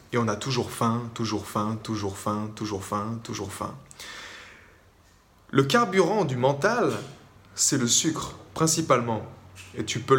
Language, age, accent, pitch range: French, 20-39, French, 115-160 Hz